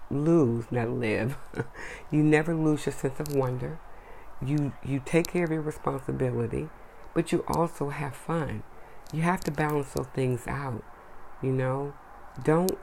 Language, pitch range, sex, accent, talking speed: English, 125-165 Hz, female, American, 150 wpm